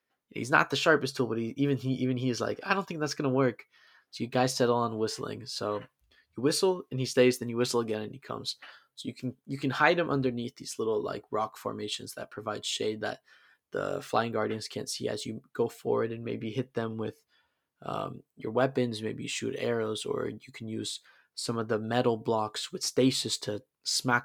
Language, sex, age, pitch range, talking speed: English, male, 20-39, 115-135 Hz, 220 wpm